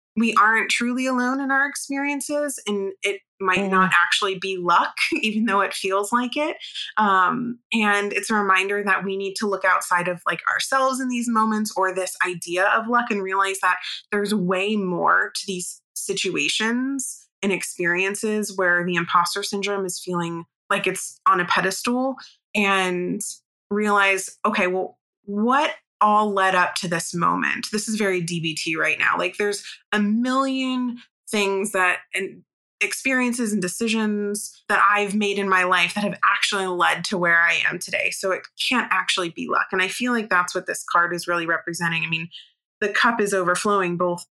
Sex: female